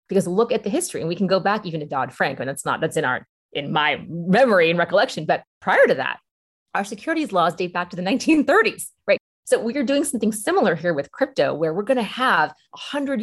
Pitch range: 150-190 Hz